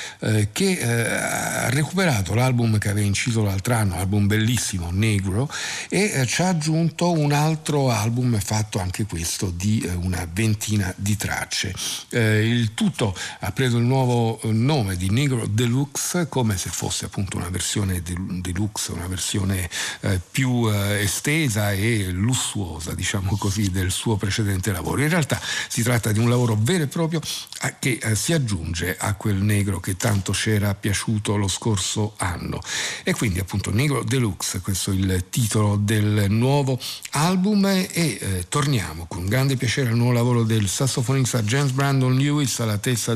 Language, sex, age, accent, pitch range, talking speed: Italian, male, 50-69, native, 100-130 Hz, 160 wpm